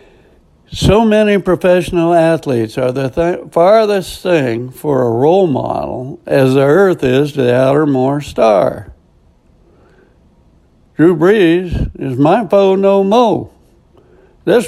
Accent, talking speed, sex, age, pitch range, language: American, 125 wpm, male, 60-79, 130-170 Hz, English